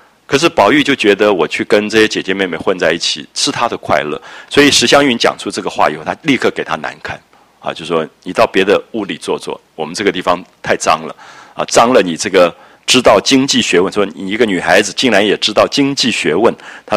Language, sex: Japanese, male